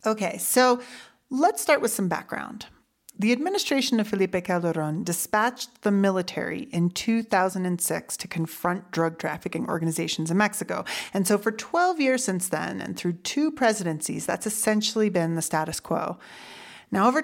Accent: American